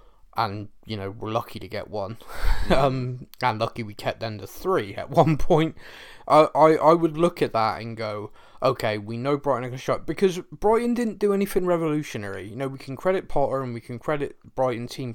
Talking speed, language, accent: 215 wpm, English, British